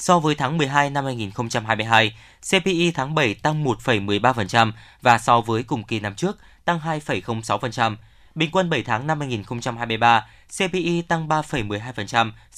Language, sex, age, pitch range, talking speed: Vietnamese, male, 20-39, 110-155 Hz, 140 wpm